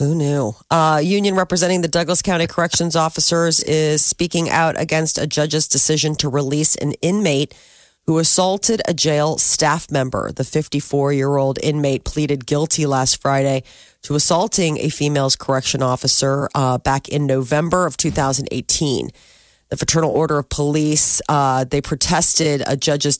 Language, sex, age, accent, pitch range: Japanese, female, 40-59, American, 140-170 Hz